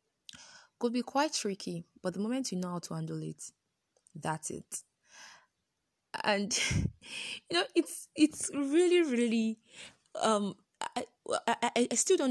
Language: English